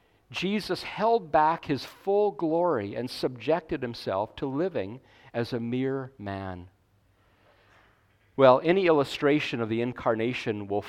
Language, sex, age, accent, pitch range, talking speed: English, male, 50-69, American, 110-155 Hz, 120 wpm